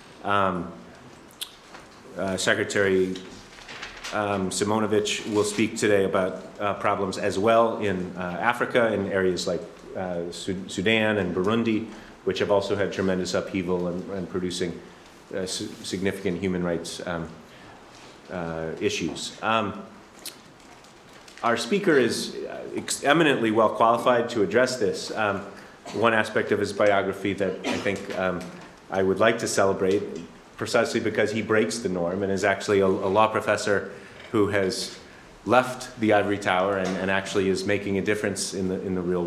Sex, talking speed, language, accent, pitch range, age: male, 145 wpm, English, American, 95-105 Hz, 30-49